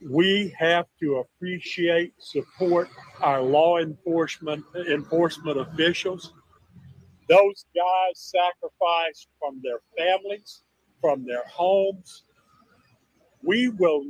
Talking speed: 90 wpm